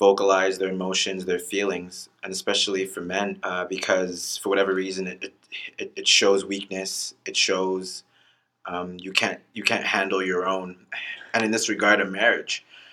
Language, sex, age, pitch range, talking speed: English, male, 20-39, 105-140 Hz, 160 wpm